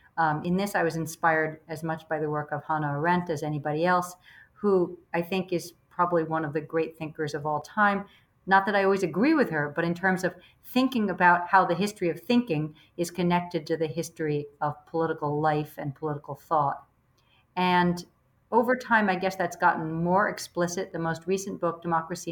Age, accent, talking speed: 50-69, American, 195 wpm